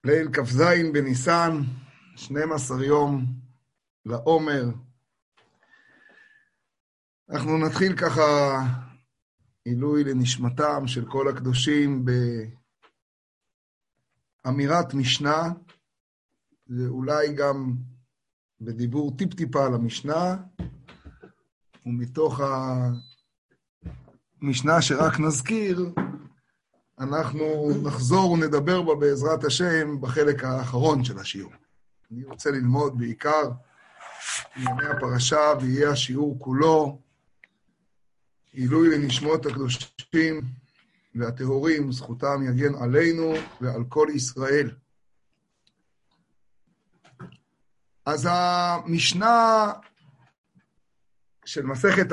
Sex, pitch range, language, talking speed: male, 125-160 Hz, Hebrew, 70 wpm